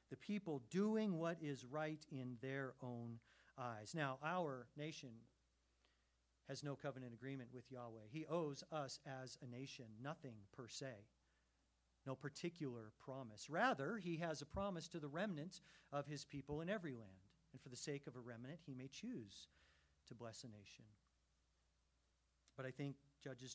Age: 40-59